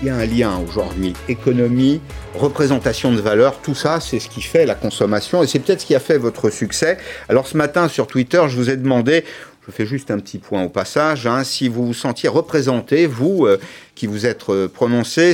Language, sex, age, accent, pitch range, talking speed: French, male, 50-69, French, 110-155 Hz, 220 wpm